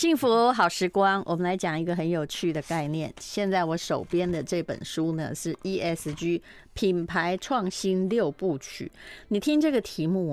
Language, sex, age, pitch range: Chinese, female, 30-49, 160-195 Hz